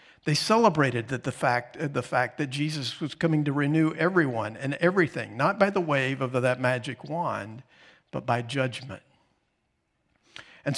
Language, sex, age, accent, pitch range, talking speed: English, male, 50-69, American, 120-155 Hz, 155 wpm